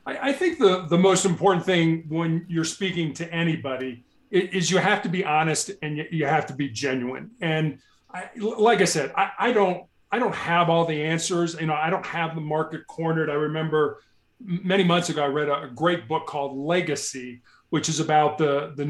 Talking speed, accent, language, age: 205 wpm, American, English, 40-59